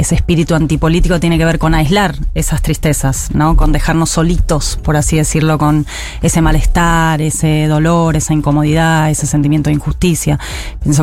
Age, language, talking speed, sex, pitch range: 30-49, Spanish, 160 wpm, female, 155-185 Hz